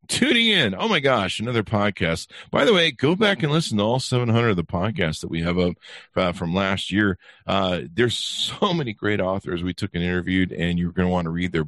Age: 50-69